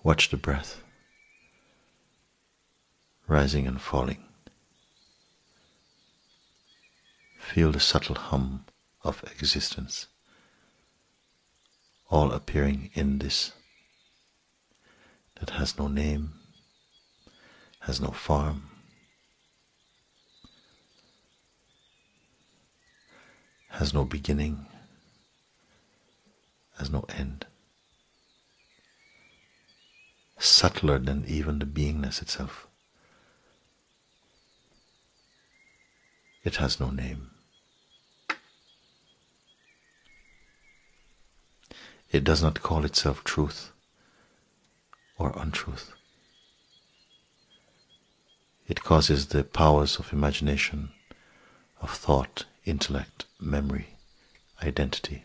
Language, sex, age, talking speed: English, male, 60-79, 65 wpm